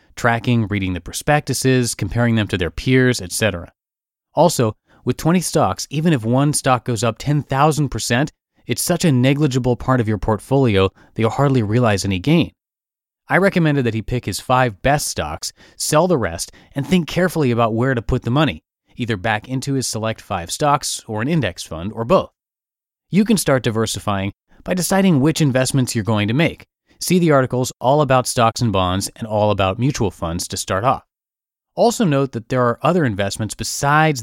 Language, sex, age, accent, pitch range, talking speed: English, male, 30-49, American, 105-140 Hz, 185 wpm